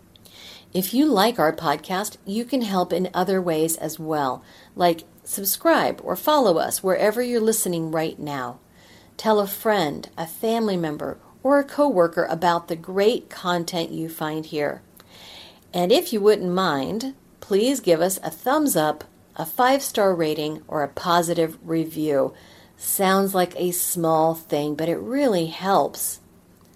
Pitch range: 165-210 Hz